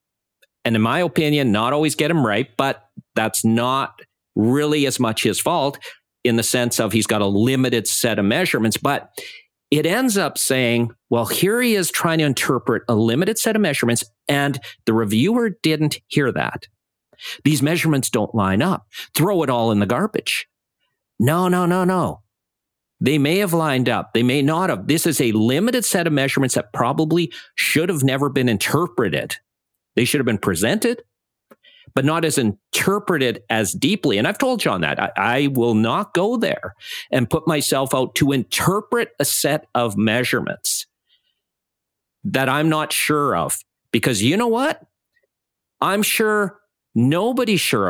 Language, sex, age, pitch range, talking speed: English, male, 50-69, 120-185 Hz, 170 wpm